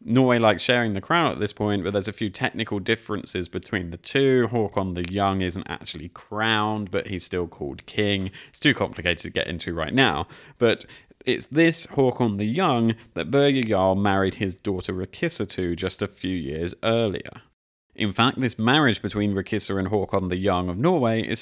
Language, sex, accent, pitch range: English, male, British, 95-115 Hz